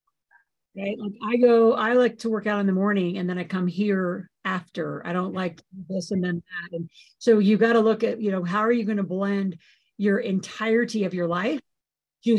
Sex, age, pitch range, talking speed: female, 50-69, 185-225 Hz, 225 wpm